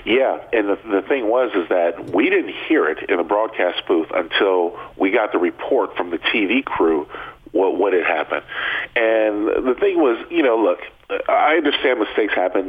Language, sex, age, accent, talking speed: English, male, 50-69, American, 185 wpm